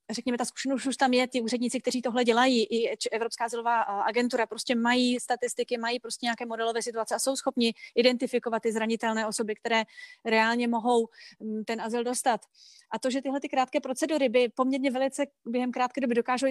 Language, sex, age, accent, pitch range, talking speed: Czech, female, 30-49, native, 235-265 Hz, 180 wpm